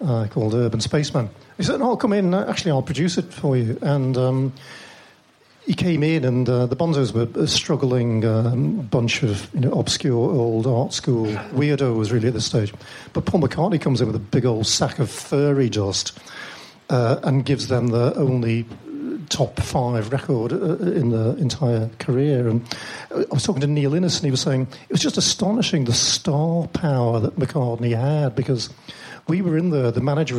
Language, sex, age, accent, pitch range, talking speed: English, male, 50-69, British, 120-155 Hz, 185 wpm